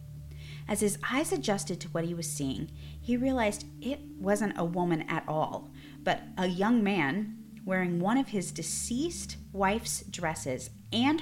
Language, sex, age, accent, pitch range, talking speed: English, female, 30-49, American, 140-215 Hz, 155 wpm